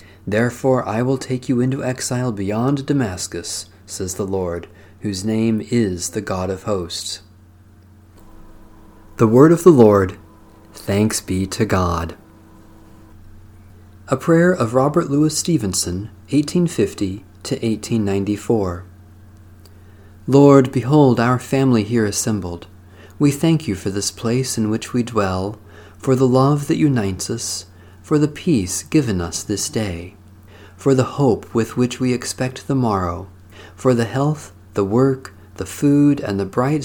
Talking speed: 140 wpm